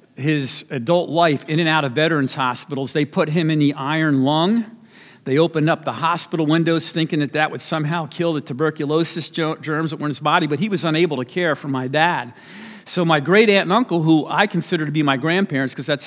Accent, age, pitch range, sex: American, 50-69, 140-175 Hz, male